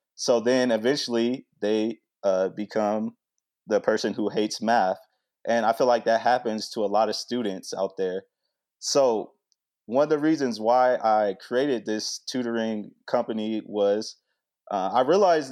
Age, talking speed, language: 20-39, 150 wpm, English